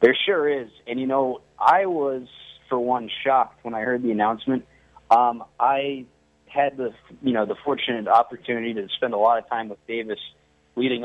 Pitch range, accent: 105-120 Hz, American